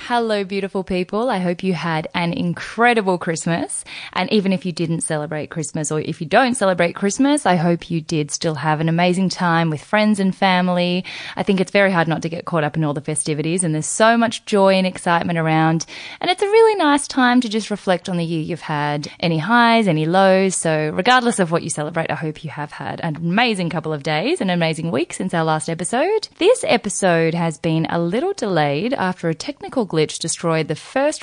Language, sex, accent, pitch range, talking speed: English, female, Australian, 155-215 Hz, 215 wpm